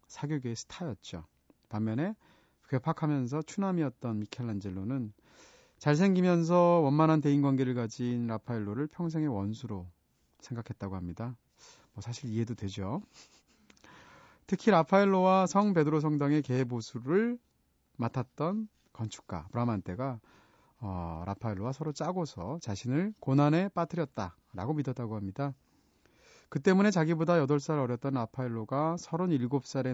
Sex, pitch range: male, 110-160 Hz